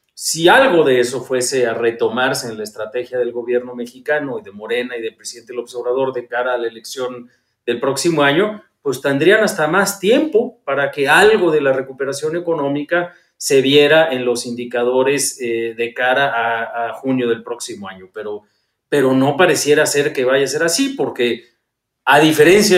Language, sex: Spanish, male